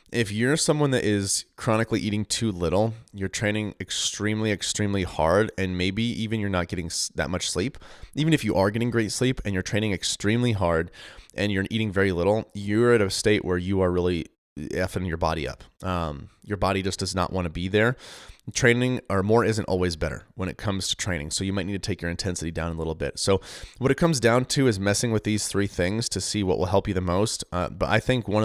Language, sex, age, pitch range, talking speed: English, male, 30-49, 90-105 Hz, 230 wpm